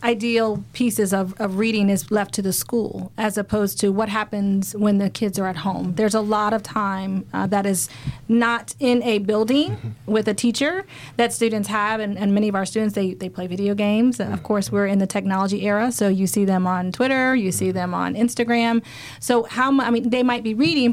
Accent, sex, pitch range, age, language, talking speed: American, female, 195-230 Hz, 30-49, English, 220 wpm